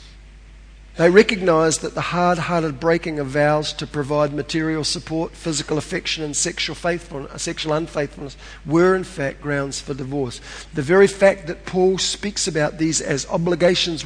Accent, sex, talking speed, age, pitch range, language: Australian, male, 145 wpm, 50-69, 140-165 Hz, English